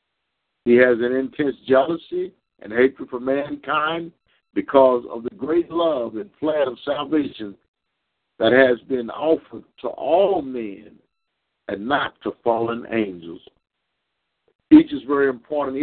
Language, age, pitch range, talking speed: English, 60-79, 125-165 Hz, 135 wpm